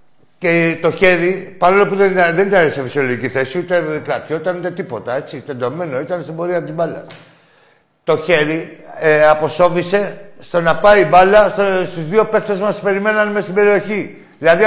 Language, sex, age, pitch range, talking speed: Greek, male, 60-79, 150-185 Hz, 165 wpm